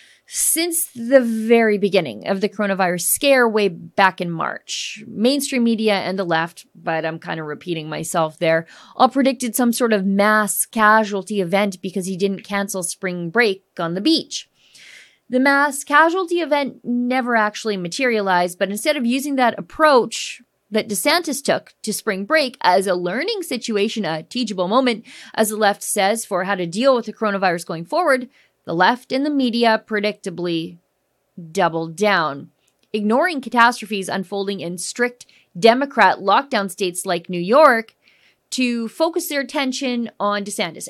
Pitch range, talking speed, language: 190-255 Hz, 155 wpm, English